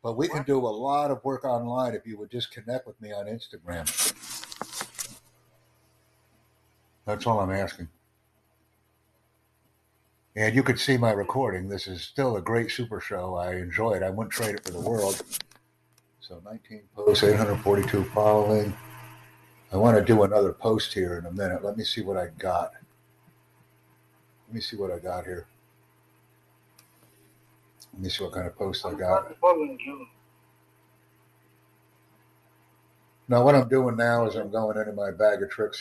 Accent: American